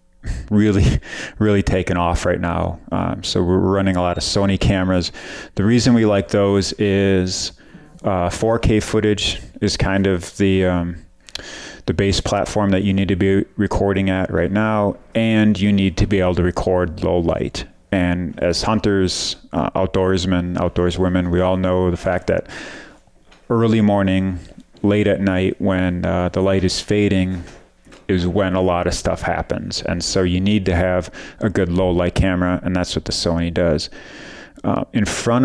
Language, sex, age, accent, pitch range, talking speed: English, male, 30-49, American, 90-100 Hz, 175 wpm